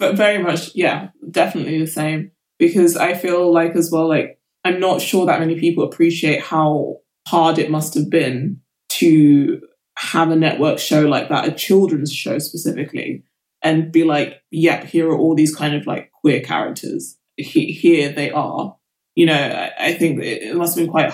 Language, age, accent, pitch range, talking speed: English, 20-39, British, 150-170 Hz, 180 wpm